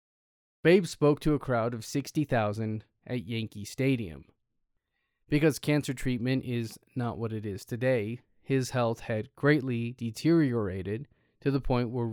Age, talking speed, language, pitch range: 20-39, 140 wpm, English, 110-135 Hz